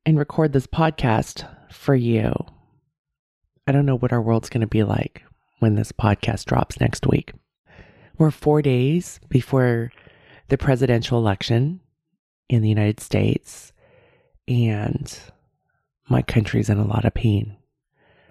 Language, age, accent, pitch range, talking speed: English, 30-49, American, 110-140 Hz, 135 wpm